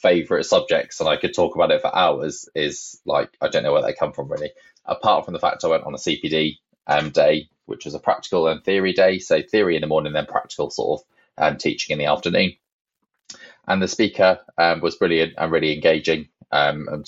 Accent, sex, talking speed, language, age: British, male, 220 wpm, English, 20-39